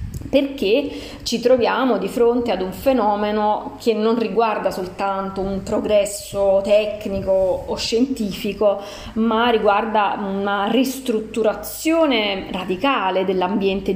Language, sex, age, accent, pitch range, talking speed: Italian, female, 30-49, native, 190-245 Hz, 100 wpm